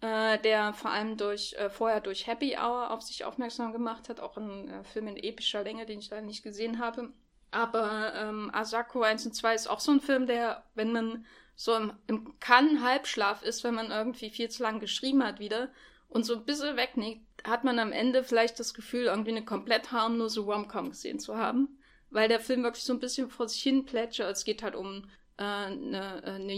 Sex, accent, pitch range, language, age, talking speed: female, German, 215-245 Hz, German, 10-29, 210 wpm